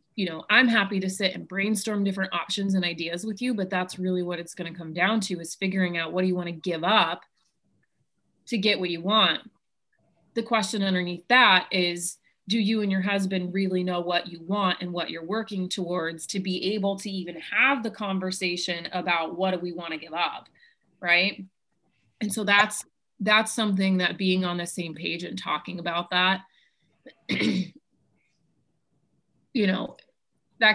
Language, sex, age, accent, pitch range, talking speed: English, female, 30-49, American, 175-205 Hz, 185 wpm